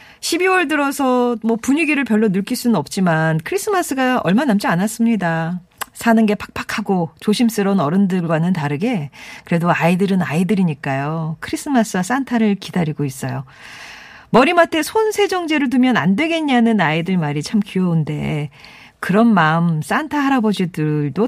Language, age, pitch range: Korean, 40-59, 170-250 Hz